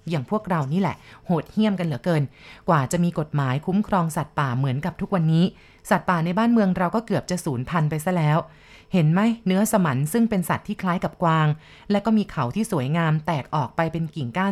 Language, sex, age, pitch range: Thai, female, 30-49, 155-195 Hz